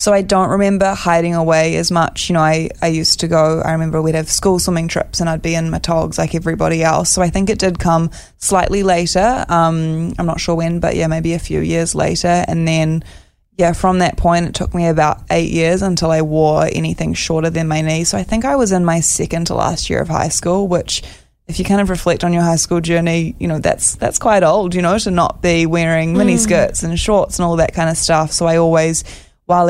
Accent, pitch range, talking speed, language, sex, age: Australian, 160-180 Hz, 245 wpm, English, female, 20-39